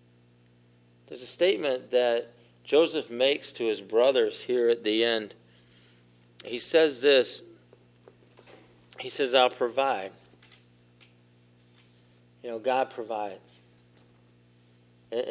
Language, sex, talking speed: English, male, 100 wpm